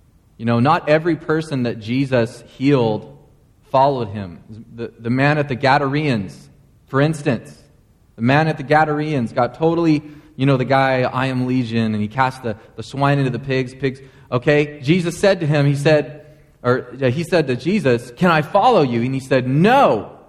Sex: male